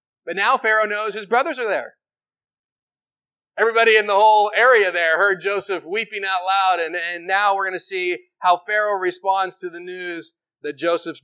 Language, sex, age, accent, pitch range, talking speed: English, male, 30-49, American, 175-220 Hz, 180 wpm